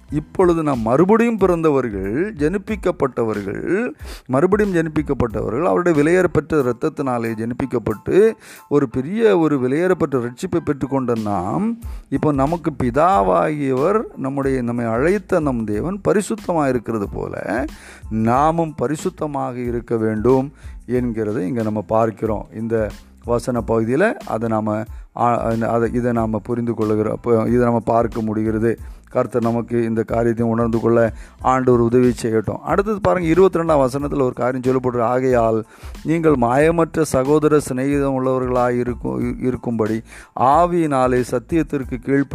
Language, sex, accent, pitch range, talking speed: Hindi, male, native, 115-150 Hz, 60 wpm